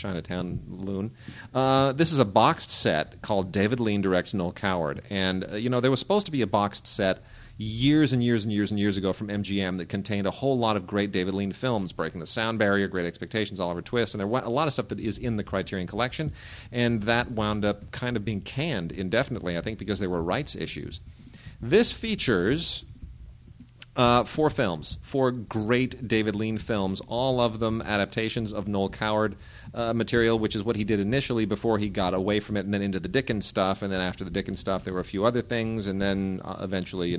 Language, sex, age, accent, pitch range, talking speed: English, male, 40-59, American, 95-115 Hz, 220 wpm